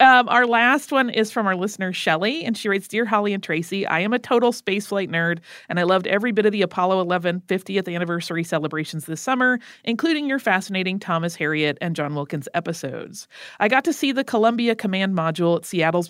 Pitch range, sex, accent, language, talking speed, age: 170-230 Hz, female, American, English, 205 wpm, 30-49